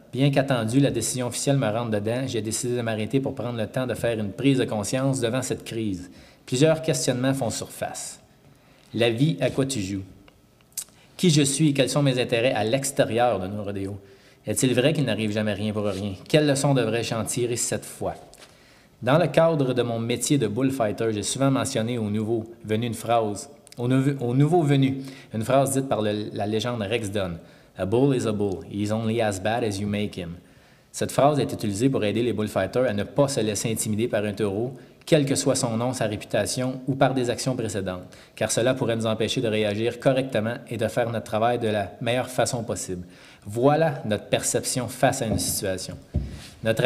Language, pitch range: French, 105-135 Hz